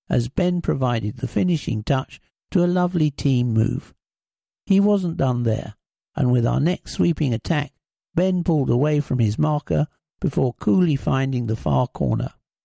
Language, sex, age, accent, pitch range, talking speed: English, male, 60-79, British, 125-175 Hz, 155 wpm